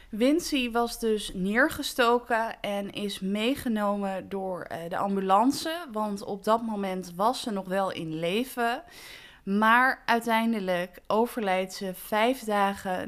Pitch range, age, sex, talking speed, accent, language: 185-230 Hz, 20-39, female, 120 wpm, Dutch, Dutch